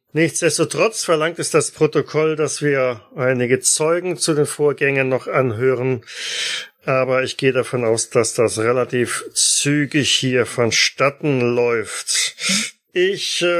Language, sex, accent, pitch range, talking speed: German, male, German, 125-155 Hz, 120 wpm